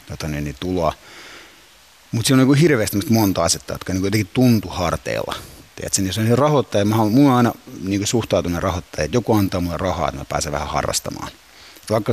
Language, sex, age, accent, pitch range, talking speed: Finnish, male, 30-49, native, 85-115 Hz, 190 wpm